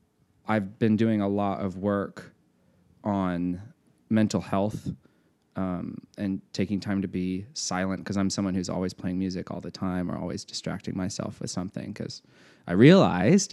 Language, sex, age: English, male, 20-39